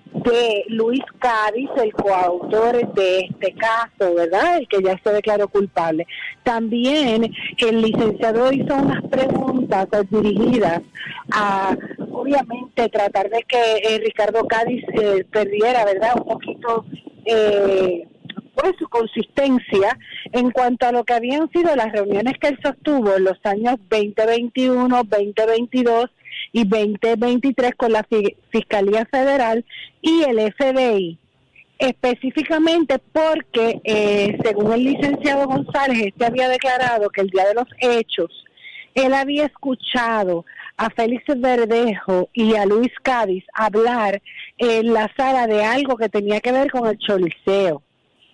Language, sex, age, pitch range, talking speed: Spanish, female, 40-59, 210-255 Hz, 130 wpm